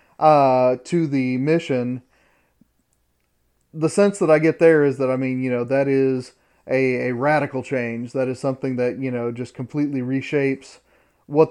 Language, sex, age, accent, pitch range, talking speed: English, male, 30-49, American, 125-155 Hz, 165 wpm